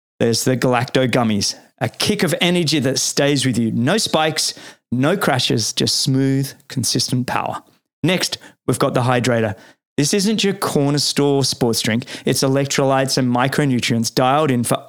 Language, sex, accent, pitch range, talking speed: English, male, Australian, 120-150 Hz, 155 wpm